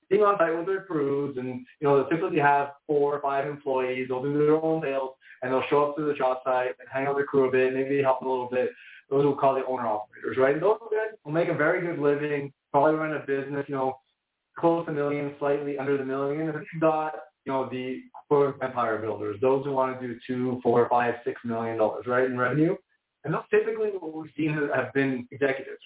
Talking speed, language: 240 wpm, English